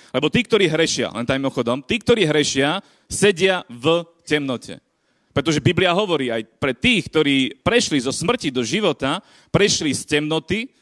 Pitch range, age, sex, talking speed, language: 150-190 Hz, 30-49, male, 150 wpm, Slovak